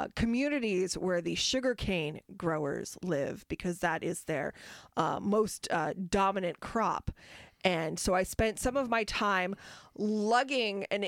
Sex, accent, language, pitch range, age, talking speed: female, American, English, 185-230 Hz, 20-39, 135 wpm